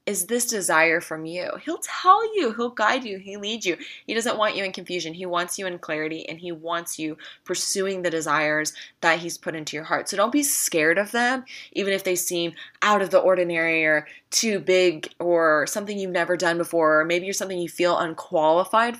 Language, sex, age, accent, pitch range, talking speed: English, female, 20-39, American, 165-200 Hz, 215 wpm